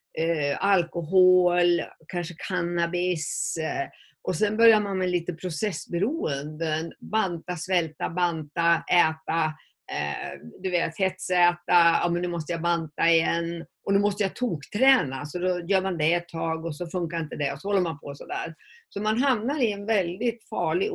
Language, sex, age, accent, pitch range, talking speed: Swedish, female, 50-69, native, 170-230 Hz, 165 wpm